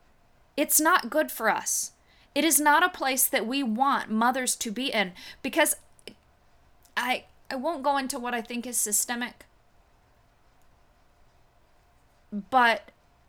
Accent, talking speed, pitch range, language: American, 130 wpm, 215-270 Hz, English